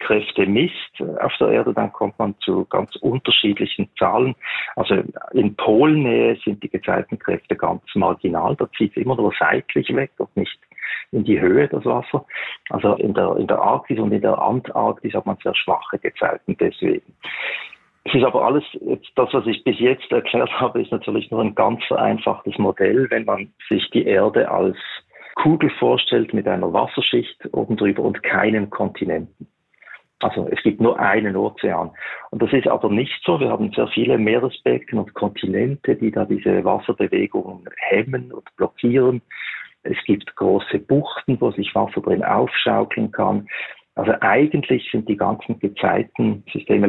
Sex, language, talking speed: male, German, 165 wpm